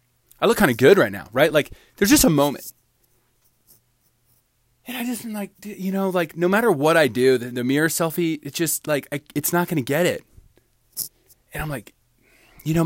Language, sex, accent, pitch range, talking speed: English, male, American, 110-140 Hz, 205 wpm